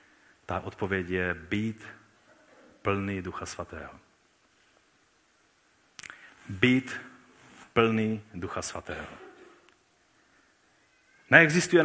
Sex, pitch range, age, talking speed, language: male, 120-155 Hz, 40-59, 60 wpm, Czech